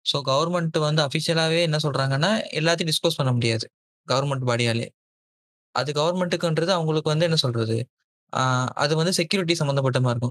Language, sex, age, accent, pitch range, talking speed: Tamil, male, 20-39, native, 130-165 Hz, 140 wpm